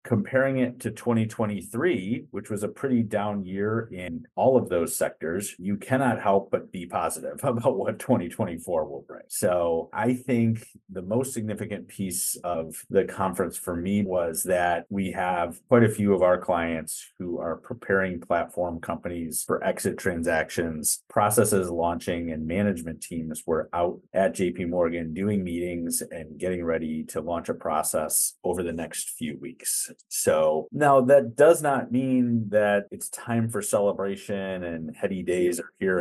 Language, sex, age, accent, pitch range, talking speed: English, male, 30-49, American, 90-115 Hz, 160 wpm